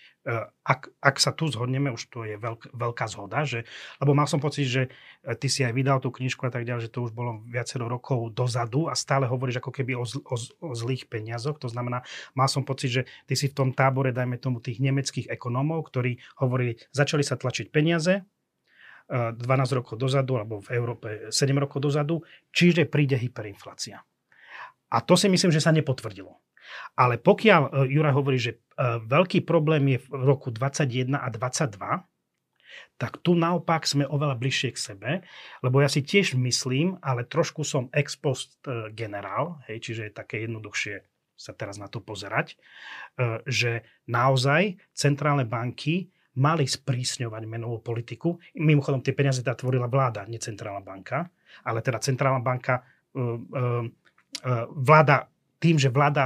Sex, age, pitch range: male, 30-49, 120-145 Hz